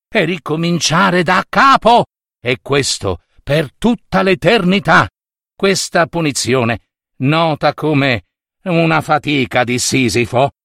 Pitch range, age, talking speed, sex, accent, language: 145-190 Hz, 50-69, 95 wpm, male, native, Italian